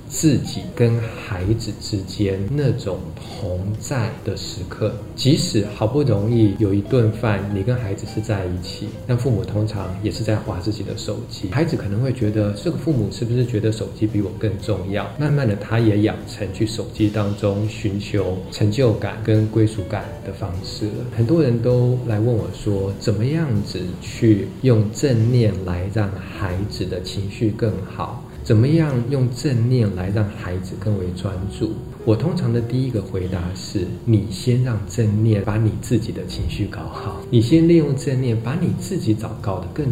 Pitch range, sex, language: 100-120 Hz, male, Chinese